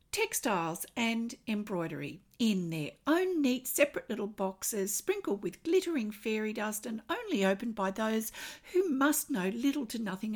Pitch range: 175-240 Hz